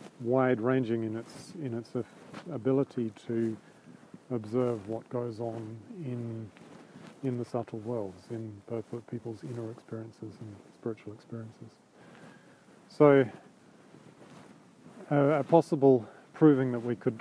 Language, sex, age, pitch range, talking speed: English, male, 40-59, 115-135 Hz, 115 wpm